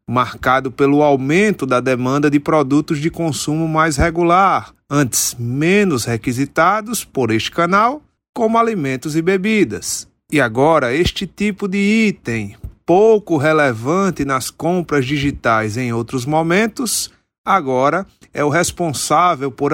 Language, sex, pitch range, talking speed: Portuguese, male, 135-185 Hz, 120 wpm